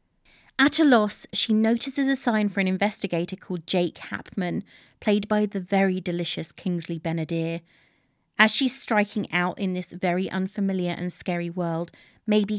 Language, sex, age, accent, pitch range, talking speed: English, female, 30-49, British, 180-235 Hz, 155 wpm